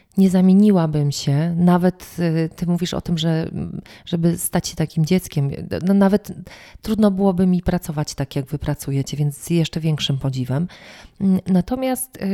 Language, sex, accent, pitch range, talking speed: Polish, female, native, 150-185 Hz, 145 wpm